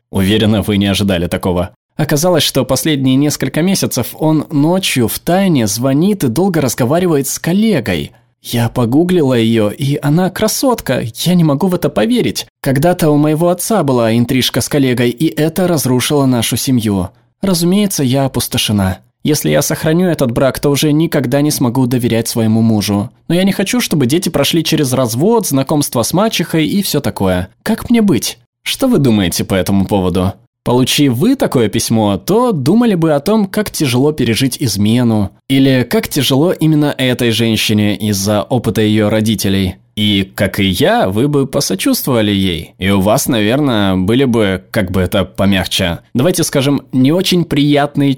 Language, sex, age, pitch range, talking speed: Russian, male, 20-39, 110-155 Hz, 165 wpm